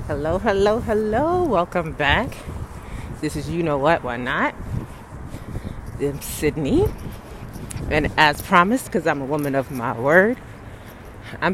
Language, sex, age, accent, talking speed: English, female, 30-49, American, 130 wpm